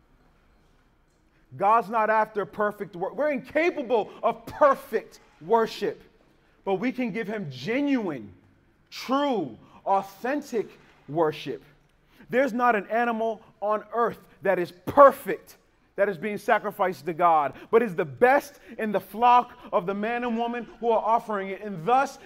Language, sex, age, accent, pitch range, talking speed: English, male, 30-49, American, 195-235 Hz, 140 wpm